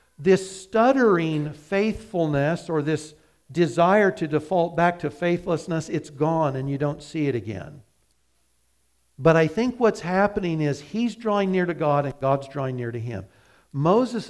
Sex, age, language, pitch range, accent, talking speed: male, 60-79, English, 145-185 Hz, American, 155 wpm